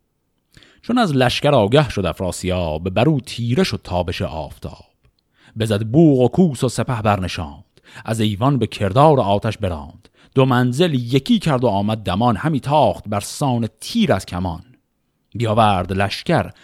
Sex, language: male, Persian